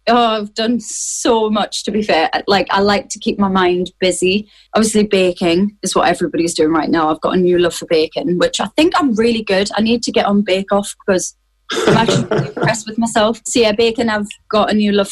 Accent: British